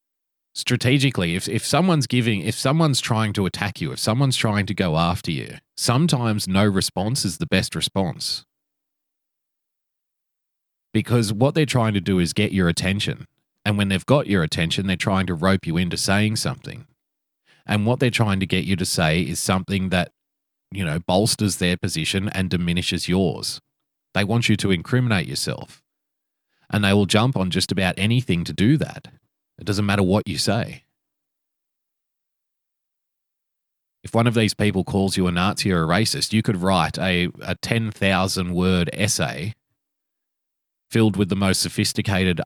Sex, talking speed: male, 165 wpm